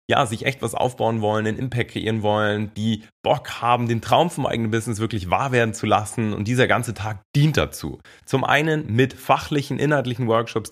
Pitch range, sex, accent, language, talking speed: 110-130 Hz, male, German, German, 195 wpm